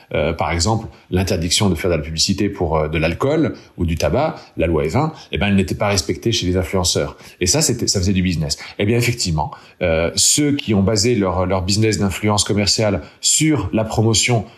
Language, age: French, 40-59